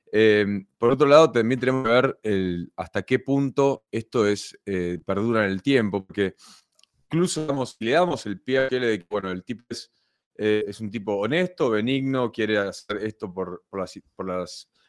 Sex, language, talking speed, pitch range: male, Spanish, 195 wpm, 105-125 Hz